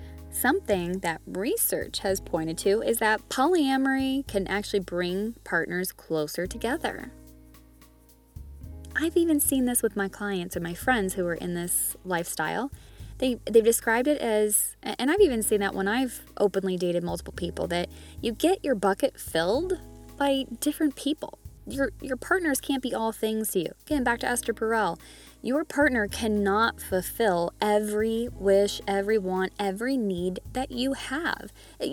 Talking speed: 155 wpm